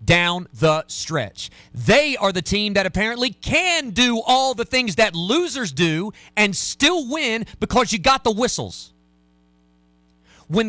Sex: male